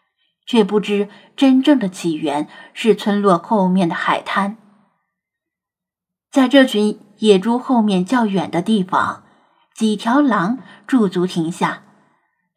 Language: Chinese